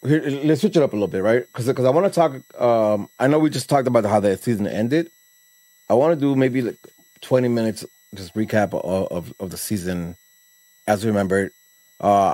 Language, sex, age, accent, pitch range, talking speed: English, male, 30-49, American, 105-175 Hz, 225 wpm